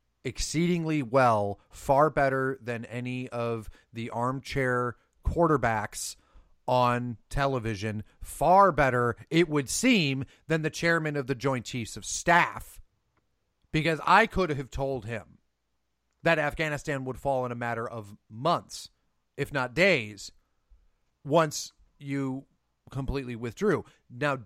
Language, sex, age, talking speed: English, male, 30-49, 120 wpm